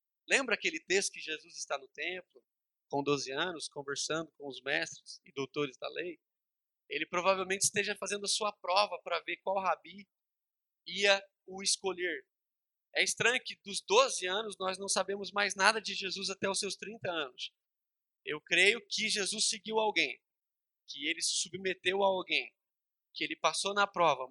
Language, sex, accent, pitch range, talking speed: Portuguese, male, Brazilian, 175-225 Hz, 170 wpm